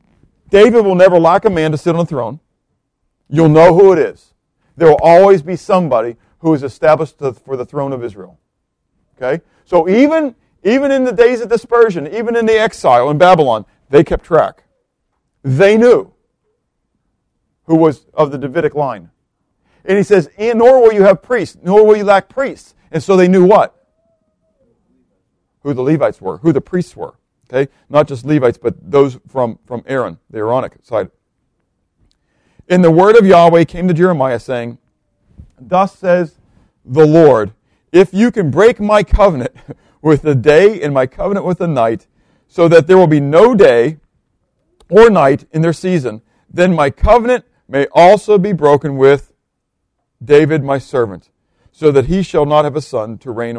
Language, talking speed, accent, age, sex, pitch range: English, 170 wpm, American, 50-69, male, 135-190 Hz